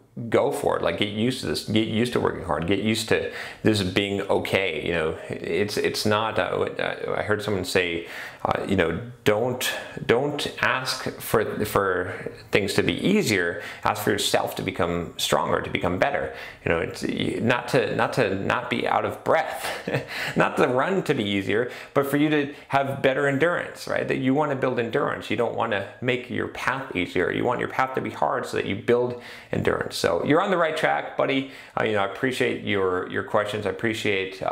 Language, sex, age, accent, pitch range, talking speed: English, male, 30-49, American, 95-125 Hz, 200 wpm